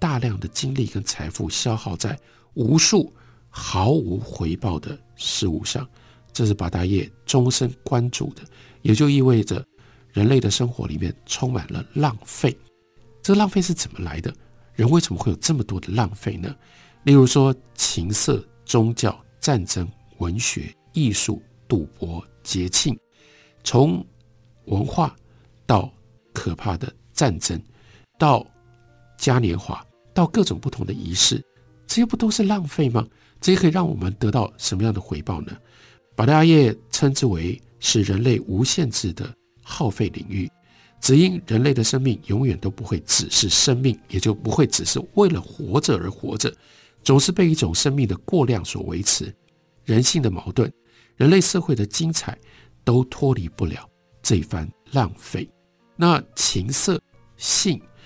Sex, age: male, 50-69